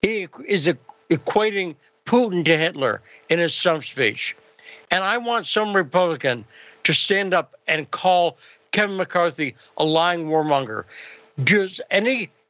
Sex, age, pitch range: male, 60-79, 155-185 Hz